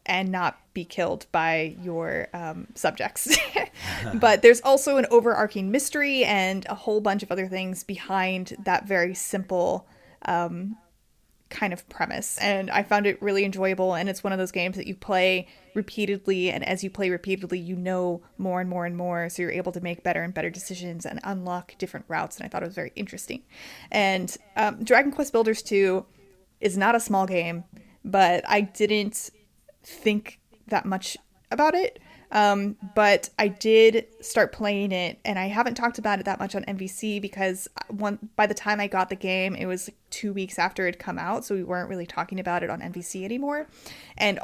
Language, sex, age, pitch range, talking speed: English, female, 20-39, 180-210 Hz, 195 wpm